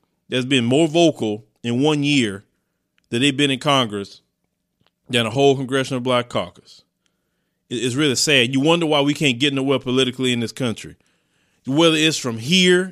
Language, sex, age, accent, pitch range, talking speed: English, male, 30-49, American, 140-200 Hz, 165 wpm